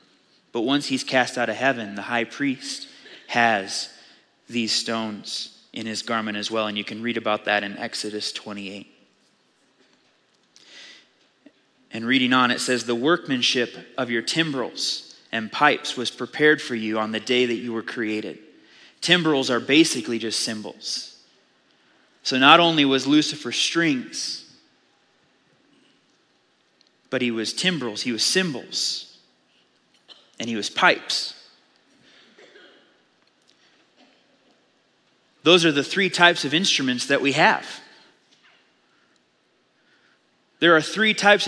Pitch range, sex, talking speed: 115-165 Hz, male, 125 wpm